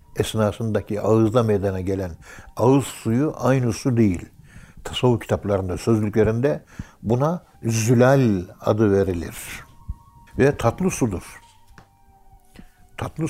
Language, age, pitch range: Turkish, 60-79, 100-130 Hz